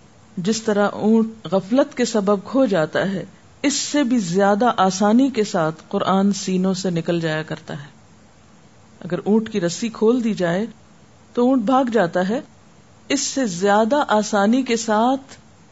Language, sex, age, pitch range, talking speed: Urdu, female, 50-69, 180-220 Hz, 155 wpm